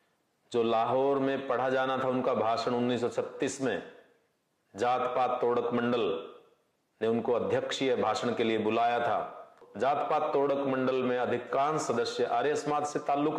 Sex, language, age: male, Hindi, 40-59